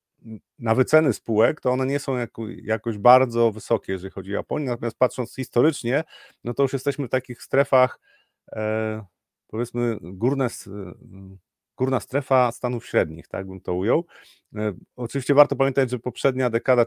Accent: native